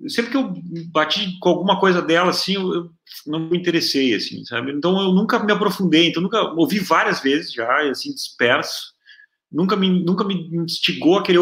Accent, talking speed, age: Brazilian, 190 wpm, 40-59